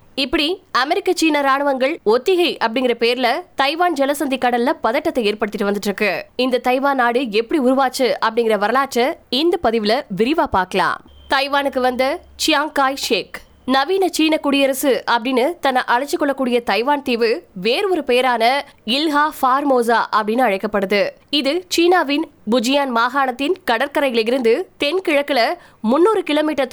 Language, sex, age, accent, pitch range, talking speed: Tamil, female, 20-39, native, 235-295 Hz, 90 wpm